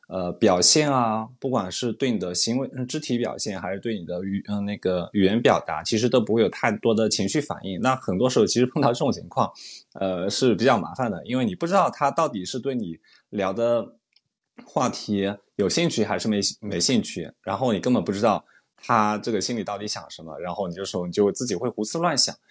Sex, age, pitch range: male, 20-39, 95-120 Hz